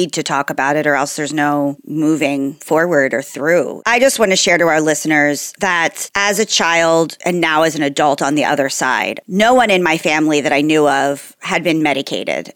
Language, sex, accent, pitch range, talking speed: English, female, American, 150-185 Hz, 215 wpm